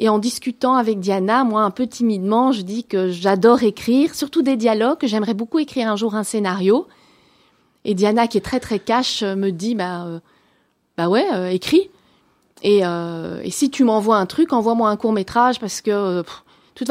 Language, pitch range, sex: French, 195-255 Hz, female